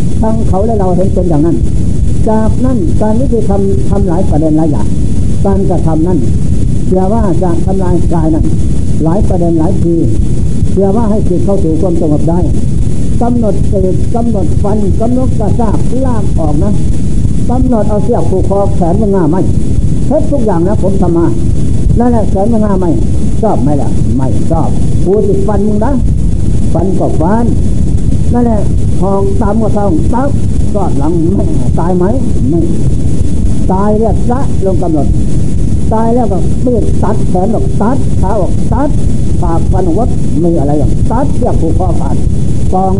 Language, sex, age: Thai, male, 60-79